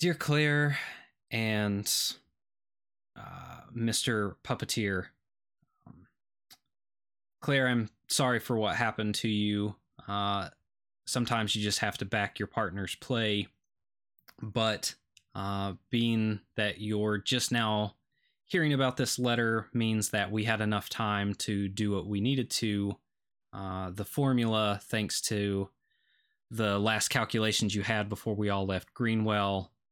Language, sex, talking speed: English, male, 125 wpm